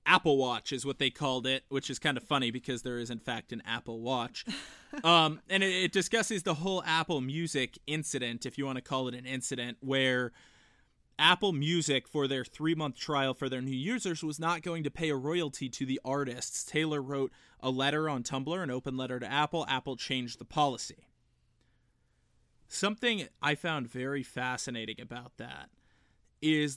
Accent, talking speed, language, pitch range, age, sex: American, 180 wpm, English, 130-160 Hz, 20-39, male